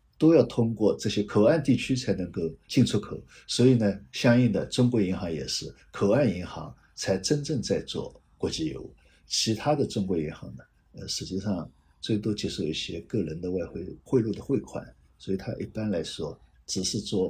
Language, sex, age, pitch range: Chinese, male, 60-79, 95-130 Hz